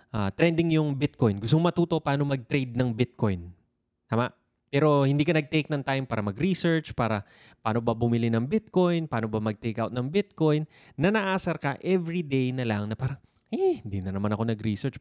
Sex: male